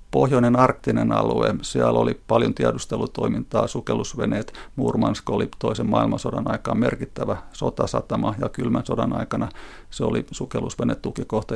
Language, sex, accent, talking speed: Finnish, male, native, 115 wpm